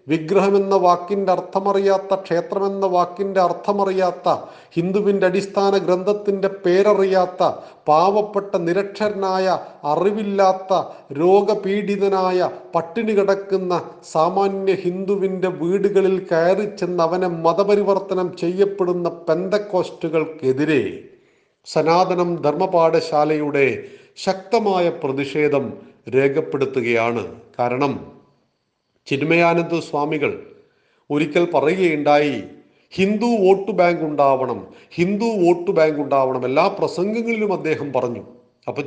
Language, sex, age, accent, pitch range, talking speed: Malayalam, male, 40-59, native, 165-200 Hz, 80 wpm